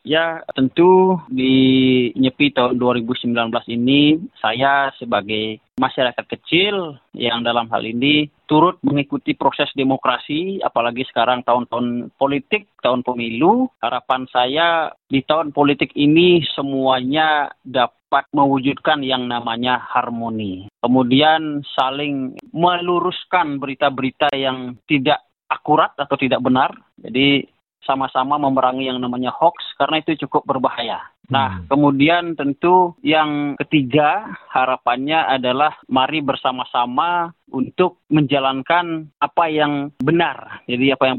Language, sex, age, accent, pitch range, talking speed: English, male, 30-49, Indonesian, 125-150 Hz, 110 wpm